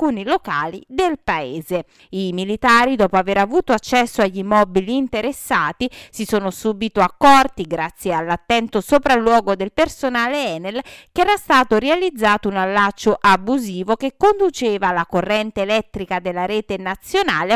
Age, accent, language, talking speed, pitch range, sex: 30-49, native, Italian, 125 wpm, 190-270 Hz, female